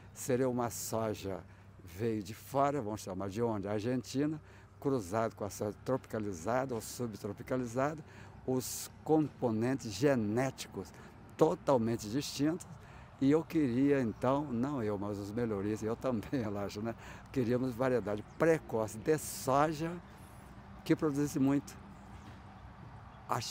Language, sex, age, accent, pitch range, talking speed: Portuguese, male, 60-79, Brazilian, 110-140 Hz, 115 wpm